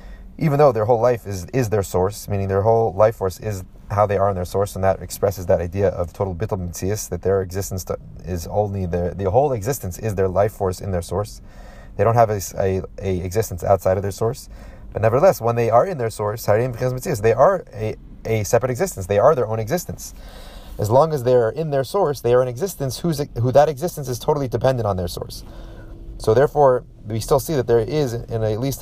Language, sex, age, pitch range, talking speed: English, male, 30-49, 95-125 Hz, 225 wpm